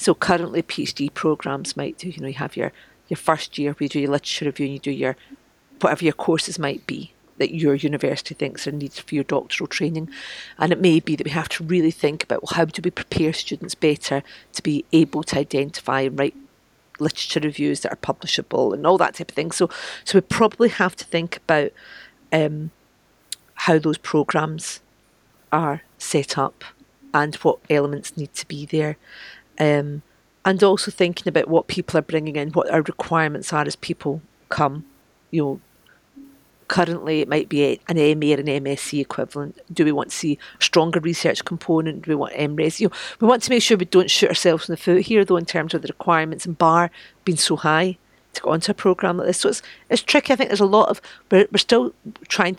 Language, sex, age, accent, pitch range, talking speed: English, female, 40-59, British, 150-180 Hz, 210 wpm